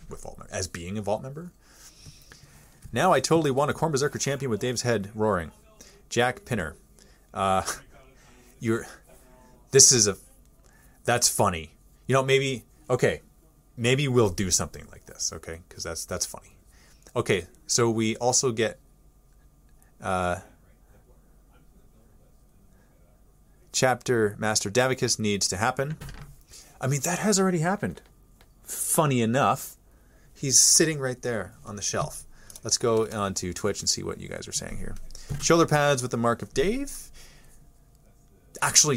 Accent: American